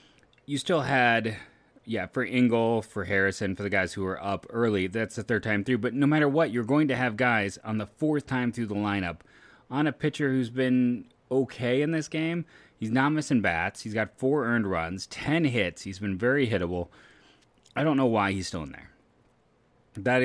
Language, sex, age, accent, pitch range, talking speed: English, male, 30-49, American, 95-125 Hz, 205 wpm